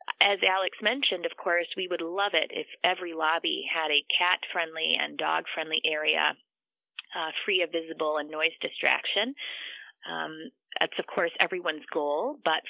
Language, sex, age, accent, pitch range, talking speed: English, female, 30-49, American, 165-210 Hz, 150 wpm